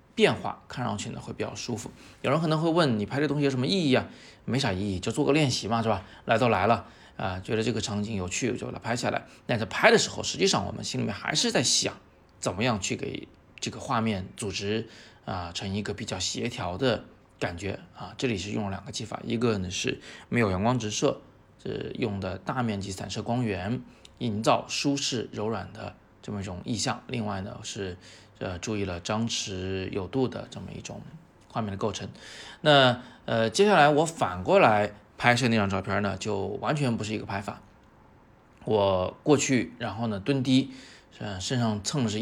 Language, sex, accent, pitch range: Chinese, male, native, 100-125 Hz